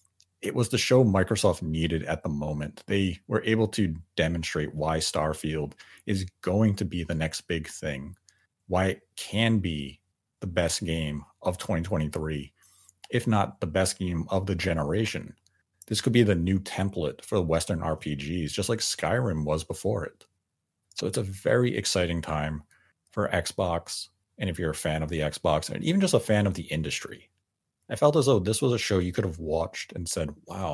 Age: 30-49